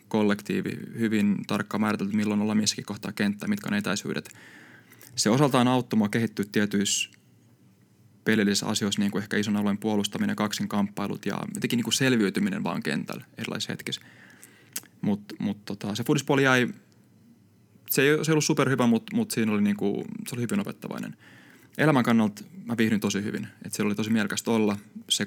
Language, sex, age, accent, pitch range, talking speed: Finnish, male, 20-39, native, 105-135 Hz, 165 wpm